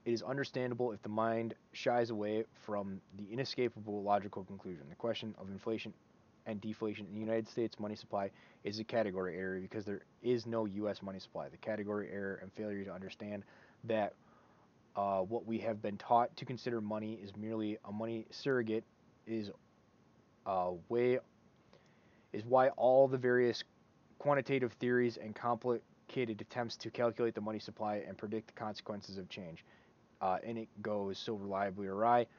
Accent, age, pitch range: American, 20-39, 105-125 Hz